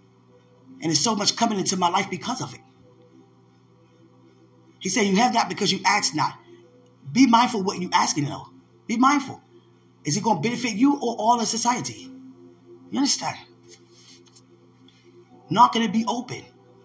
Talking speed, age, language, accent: 160 wpm, 20-39, English, American